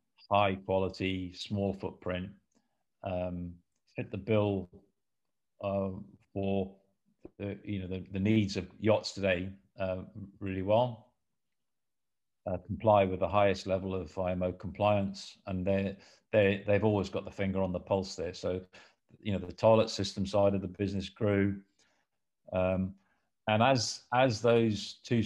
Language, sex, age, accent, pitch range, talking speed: English, male, 50-69, British, 90-105 Hz, 145 wpm